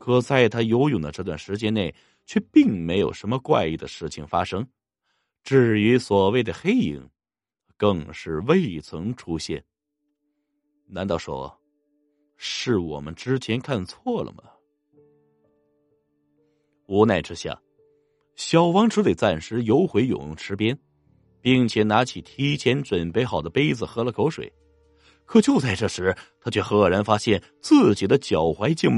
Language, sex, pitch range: Chinese, male, 95-145 Hz